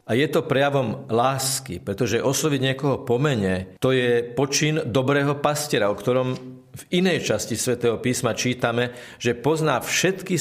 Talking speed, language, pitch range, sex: 145 wpm, Slovak, 110-135 Hz, male